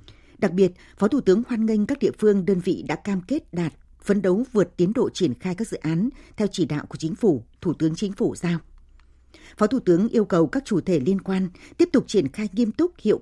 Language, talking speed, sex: Vietnamese, 245 wpm, female